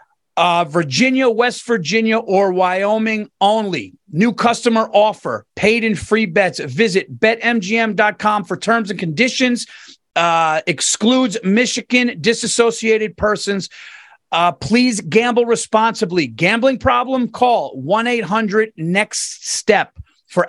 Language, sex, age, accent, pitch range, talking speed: English, male, 40-59, American, 195-225 Hz, 100 wpm